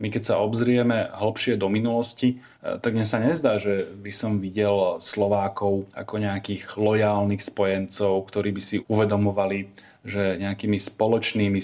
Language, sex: Slovak, male